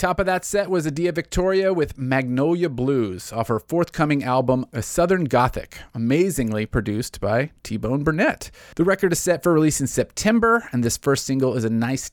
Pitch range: 115-165 Hz